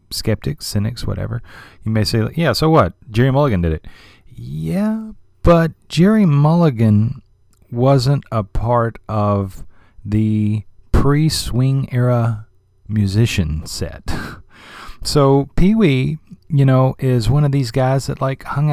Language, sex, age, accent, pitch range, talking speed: English, male, 30-49, American, 100-140 Hz, 125 wpm